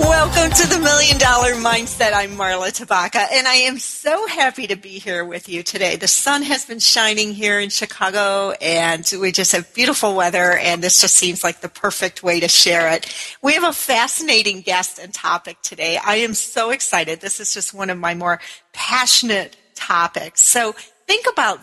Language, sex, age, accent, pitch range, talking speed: English, female, 40-59, American, 180-235 Hz, 190 wpm